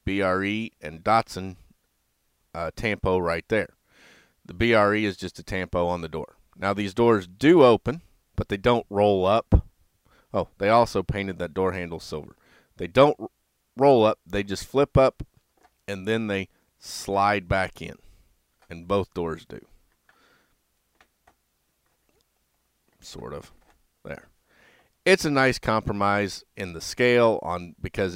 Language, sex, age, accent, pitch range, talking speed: English, male, 40-59, American, 85-105 Hz, 140 wpm